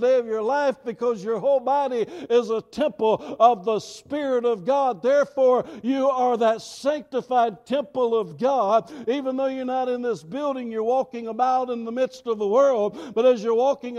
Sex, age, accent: male, 60-79, American